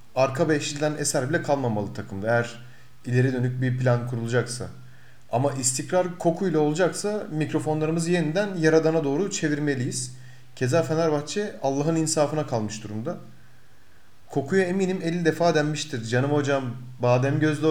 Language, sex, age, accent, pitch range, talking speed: Turkish, male, 40-59, native, 125-155 Hz, 120 wpm